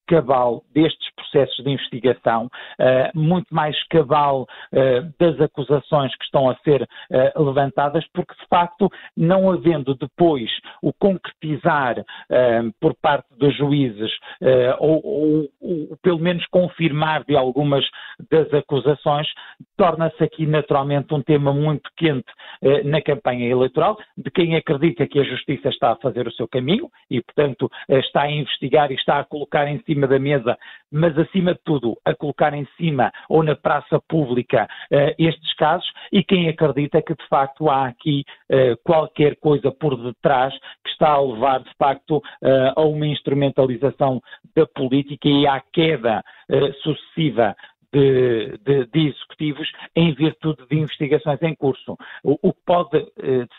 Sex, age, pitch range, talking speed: male, 50-69, 135-160 Hz, 140 wpm